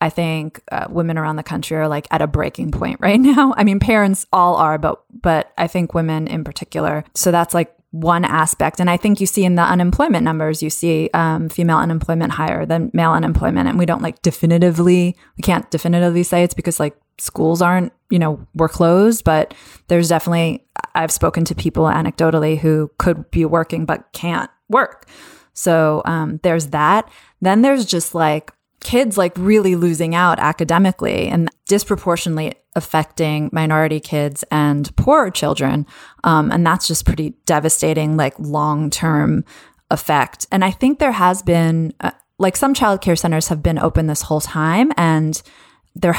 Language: English